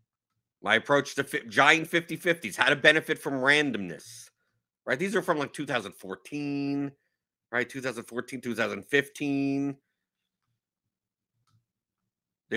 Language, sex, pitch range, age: English, male, 120-155 Hz, 50-69